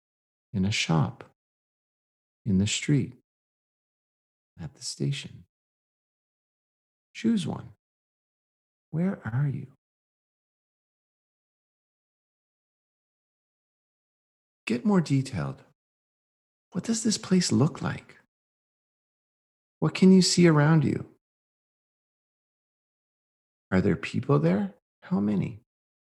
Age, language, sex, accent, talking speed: 50-69, English, male, American, 80 wpm